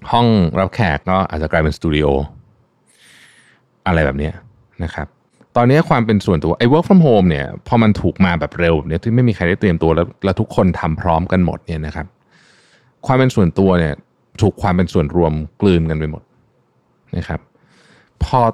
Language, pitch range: Thai, 85-120 Hz